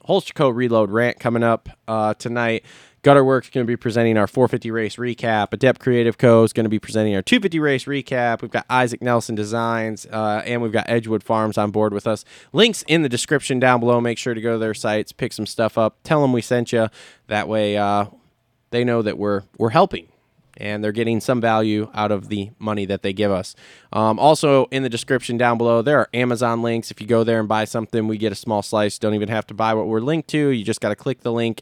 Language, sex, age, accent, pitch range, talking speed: English, male, 20-39, American, 105-120 Hz, 245 wpm